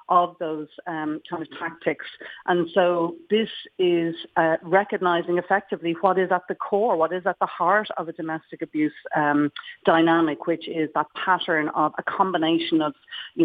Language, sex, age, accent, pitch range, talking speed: English, female, 40-59, Irish, 160-185 Hz, 170 wpm